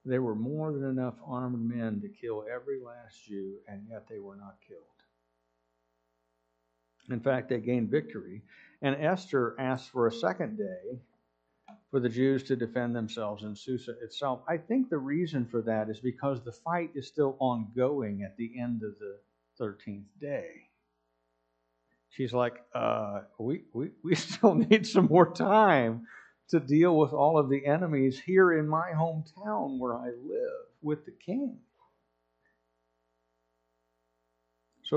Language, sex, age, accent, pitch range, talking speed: English, male, 60-79, American, 100-150 Hz, 150 wpm